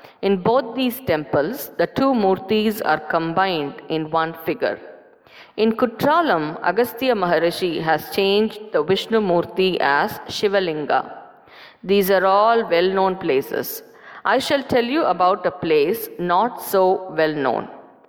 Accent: Indian